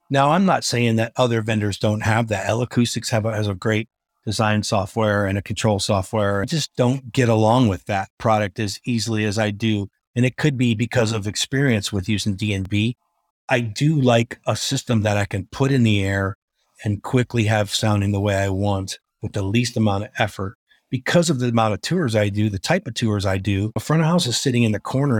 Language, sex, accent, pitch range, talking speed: English, male, American, 105-125 Hz, 225 wpm